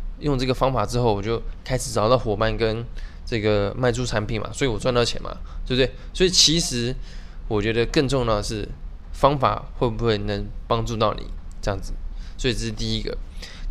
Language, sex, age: Chinese, male, 20-39